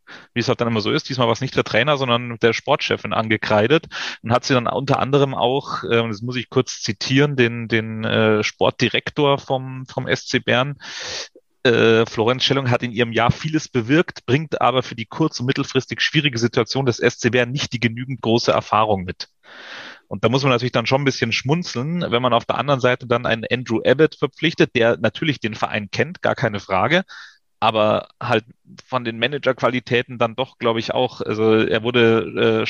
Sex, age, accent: male, 30-49, German